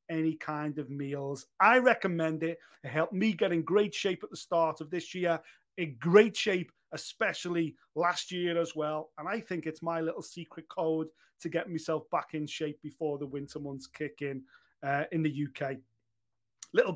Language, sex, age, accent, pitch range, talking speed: English, male, 30-49, British, 155-200 Hz, 190 wpm